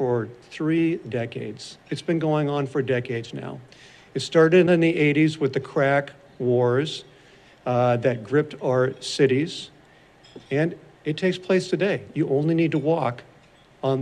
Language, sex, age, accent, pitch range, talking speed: English, male, 50-69, American, 130-160 Hz, 150 wpm